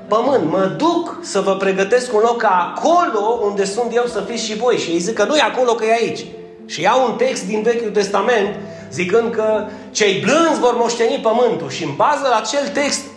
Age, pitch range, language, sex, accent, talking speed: 30-49, 180-230 Hz, Romanian, male, native, 210 wpm